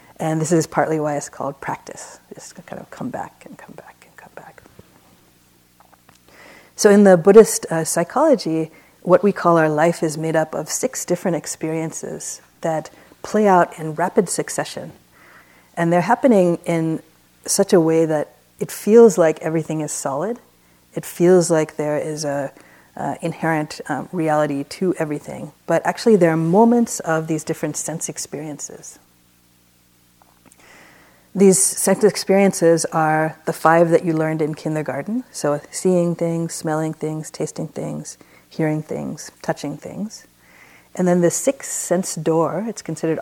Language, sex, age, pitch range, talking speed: English, female, 40-59, 150-175 Hz, 150 wpm